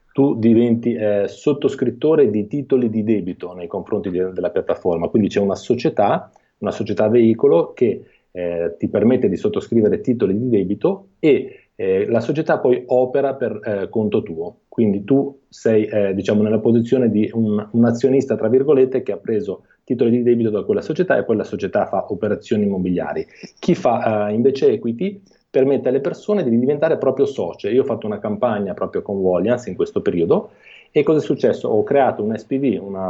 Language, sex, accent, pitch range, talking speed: Italian, male, native, 105-145 Hz, 180 wpm